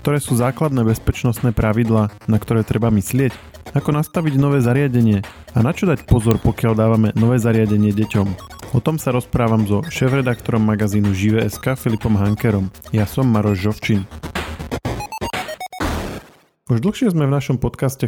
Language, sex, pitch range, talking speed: Slovak, male, 105-125 Hz, 145 wpm